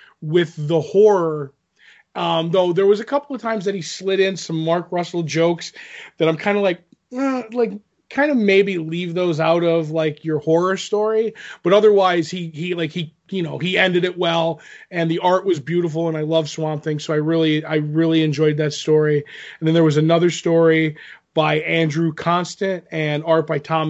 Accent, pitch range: American, 155-180 Hz